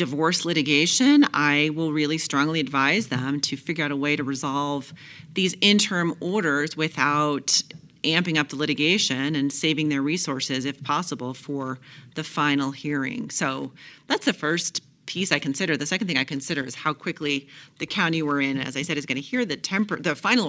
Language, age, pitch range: English, 40-59, 135-160 Hz